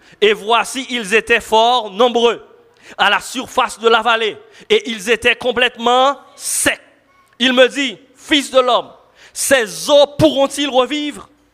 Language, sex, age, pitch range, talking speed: French, male, 40-59, 180-270 Hz, 140 wpm